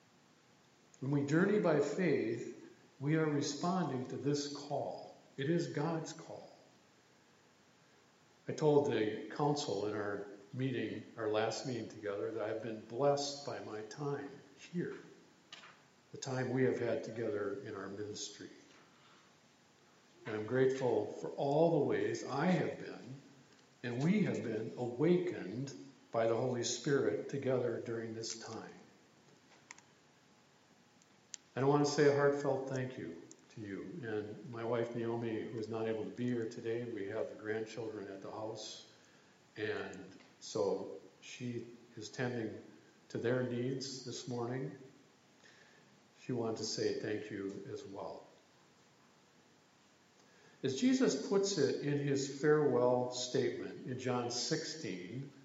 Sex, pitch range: male, 110-145 Hz